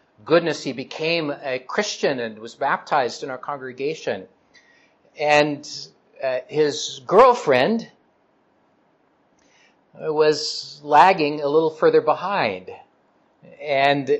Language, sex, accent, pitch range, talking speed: English, male, American, 125-165 Hz, 95 wpm